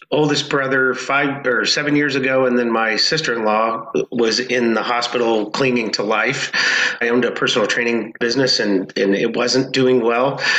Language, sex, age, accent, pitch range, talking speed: English, male, 30-49, American, 115-130 Hz, 170 wpm